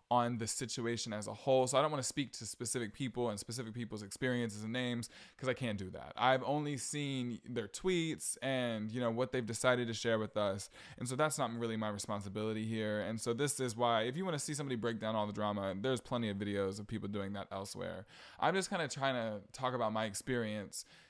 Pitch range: 110-135 Hz